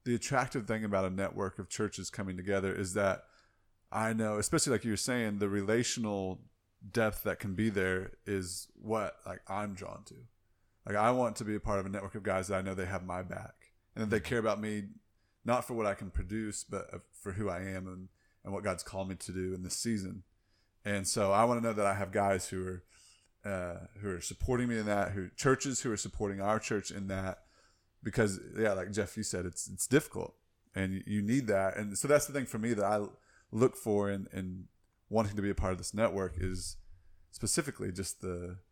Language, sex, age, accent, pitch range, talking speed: English, male, 30-49, American, 95-110 Hz, 225 wpm